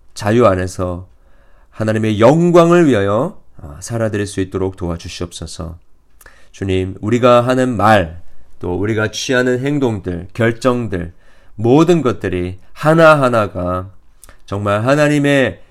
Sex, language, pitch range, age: male, Korean, 90-125 Hz, 40-59